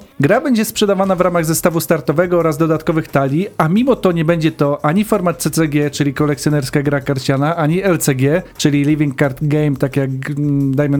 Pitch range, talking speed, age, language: 150-185 Hz, 175 wpm, 40-59, Polish